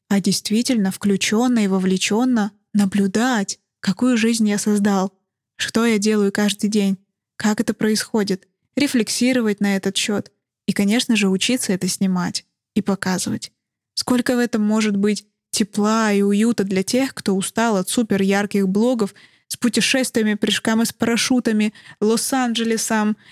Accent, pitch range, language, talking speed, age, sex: native, 200-235 Hz, Russian, 135 wpm, 20-39, female